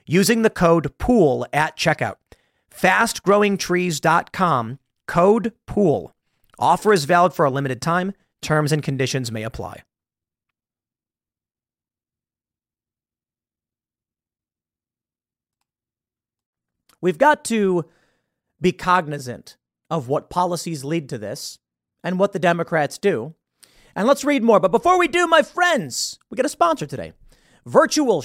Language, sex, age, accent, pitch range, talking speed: English, male, 40-59, American, 150-210 Hz, 115 wpm